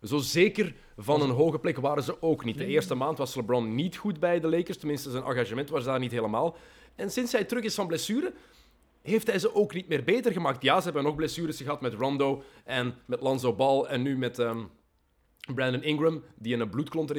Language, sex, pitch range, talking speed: Dutch, male, 130-185 Hz, 215 wpm